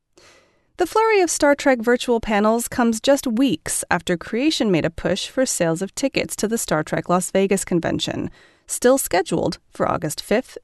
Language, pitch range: English, 180-285 Hz